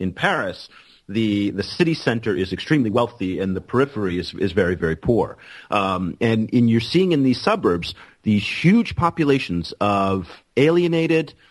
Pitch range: 105-140 Hz